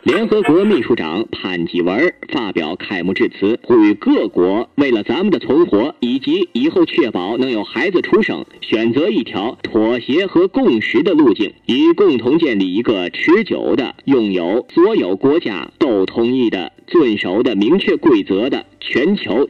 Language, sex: Chinese, male